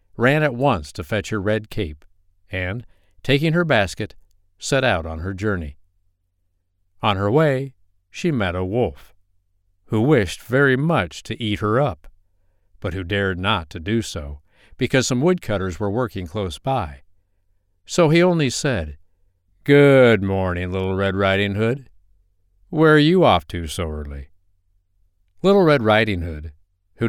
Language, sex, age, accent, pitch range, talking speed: English, male, 60-79, American, 90-125 Hz, 150 wpm